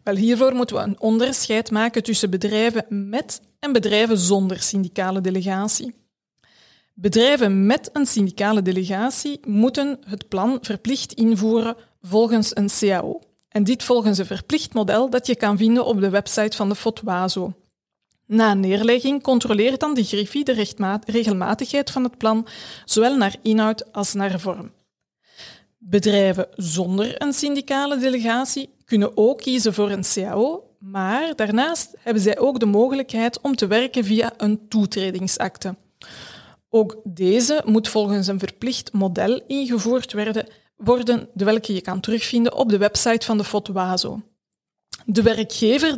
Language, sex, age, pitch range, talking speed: Dutch, female, 20-39, 200-245 Hz, 140 wpm